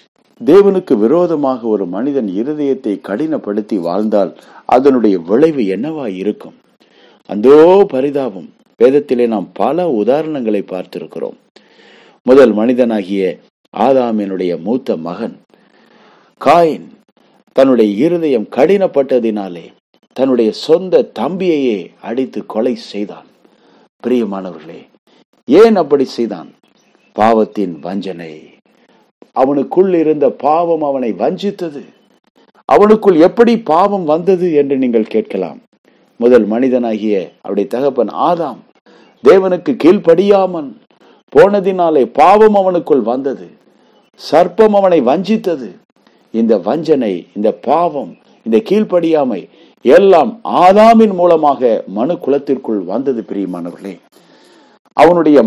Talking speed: 75 wpm